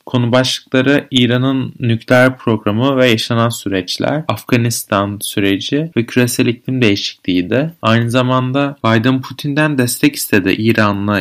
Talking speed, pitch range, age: 120 wpm, 105-130 Hz, 30-49